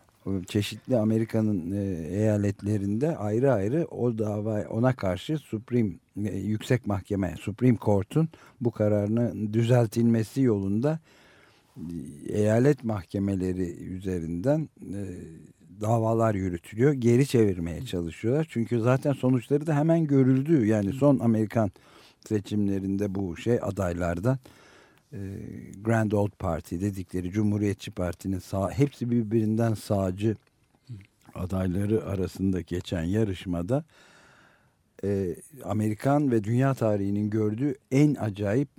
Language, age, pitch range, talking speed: Turkish, 50-69, 100-120 Hz, 95 wpm